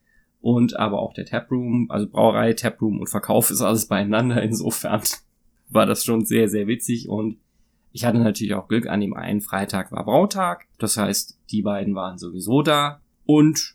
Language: German